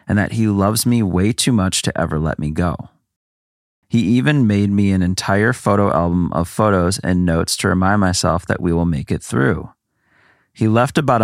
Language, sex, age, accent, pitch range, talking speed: English, male, 30-49, American, 90-110 Hz, 200 wpm